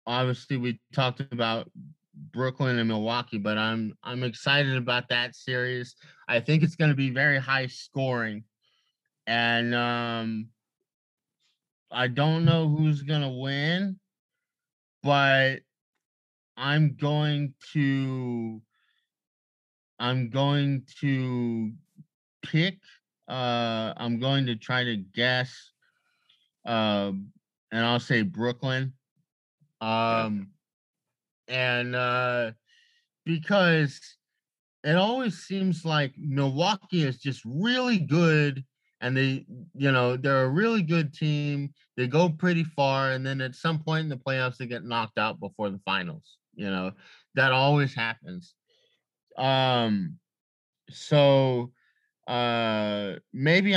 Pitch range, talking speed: 120-155 Hz, 115 wpm